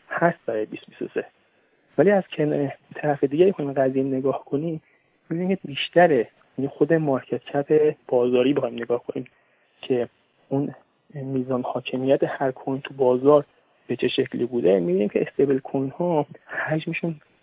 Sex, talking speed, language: male, 145 wpm, Persian